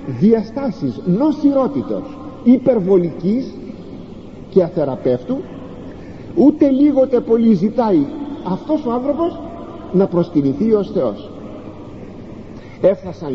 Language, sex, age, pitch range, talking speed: Greek, male, 50-69, 150-240 Hz, 75 wpm